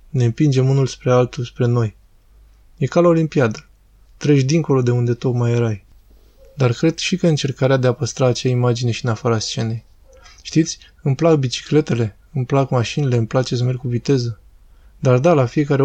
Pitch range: 120-140 Hz